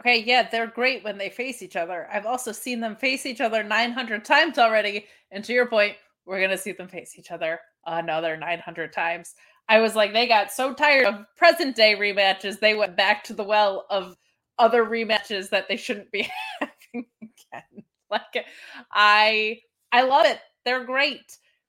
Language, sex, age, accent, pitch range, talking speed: English, female, 20-39, American, 200-290 Hz, 185 wpm